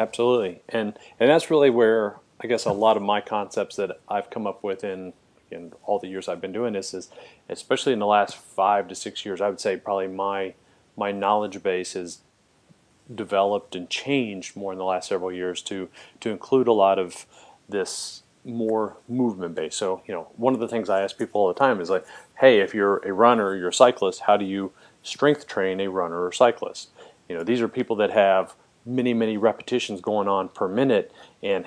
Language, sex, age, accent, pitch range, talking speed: English, male, 40-59, American, 95-120 Hz, 210 wpm